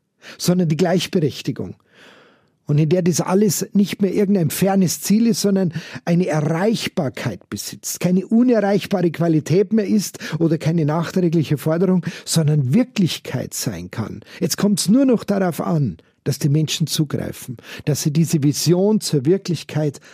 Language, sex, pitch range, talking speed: German, male, 150-195 Hz, 145 wpm